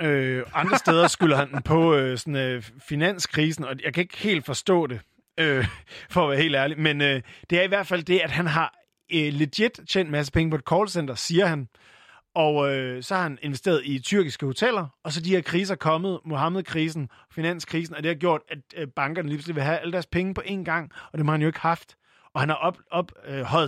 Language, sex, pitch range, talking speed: Danish, male, 130-165 Hz, 235 wpm